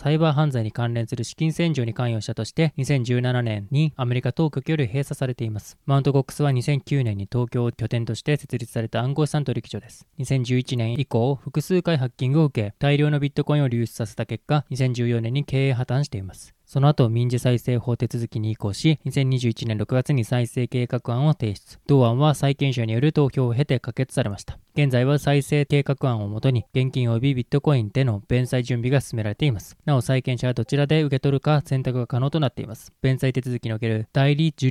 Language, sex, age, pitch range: Japanese, male, 20-39, 120-145 Hz